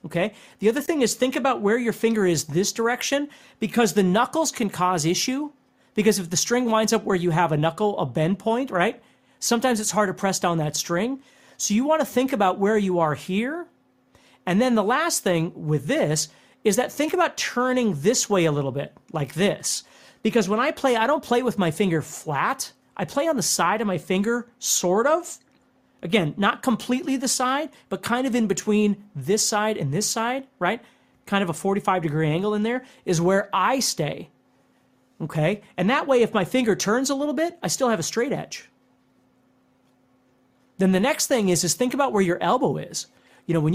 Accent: American